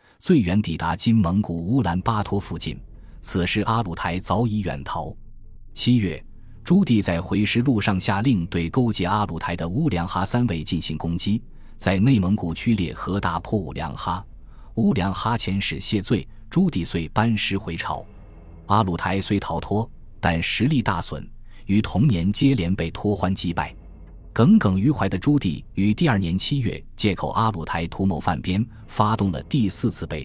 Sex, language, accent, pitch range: male, Chinese, native, 85-110 Hz